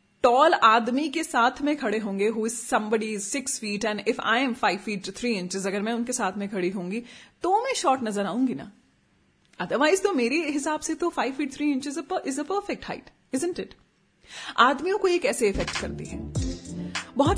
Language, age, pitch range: Hindi, 30-49, 210-275 Hz